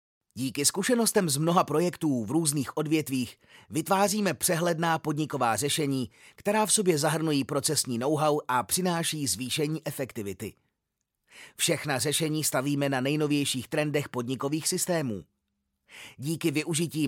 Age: 30-49